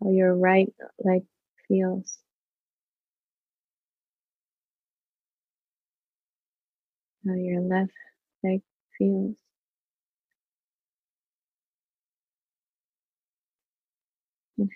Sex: female